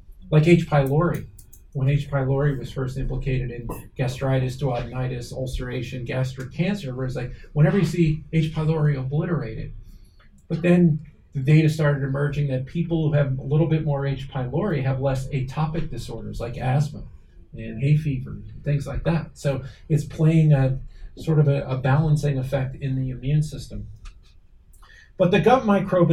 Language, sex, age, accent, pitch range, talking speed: Swedish, male, 40-59, American, 130-155 Hz, 160 wpm